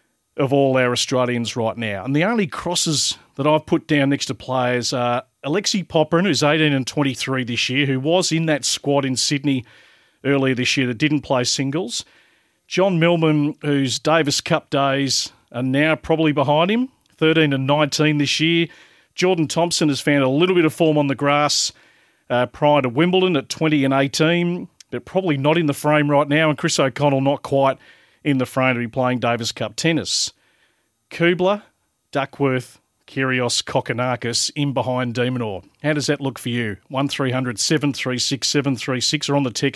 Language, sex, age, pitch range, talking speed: English, male, 40-59, 125-155 Hz, 170 wpm